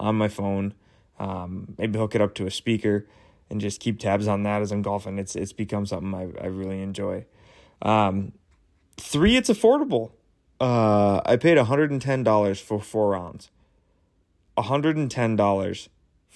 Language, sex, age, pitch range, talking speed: English, male, 20-39, 95-110 Hz, 145 wpm